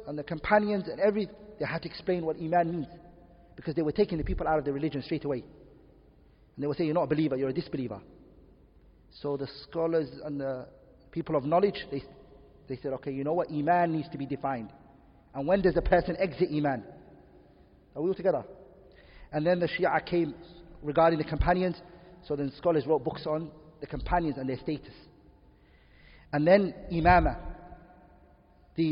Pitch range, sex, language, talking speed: 140-185 Hz, male, English, 185 wpm